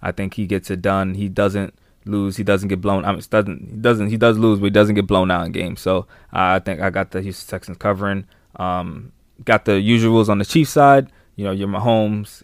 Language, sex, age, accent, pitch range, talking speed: English, male, 20-39, American, 95-110 Hz, 245 wpm